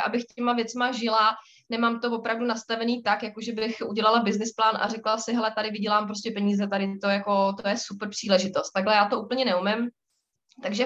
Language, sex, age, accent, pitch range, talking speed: Czech, female, 20-39, native, 210-245 Hz, 195 wpm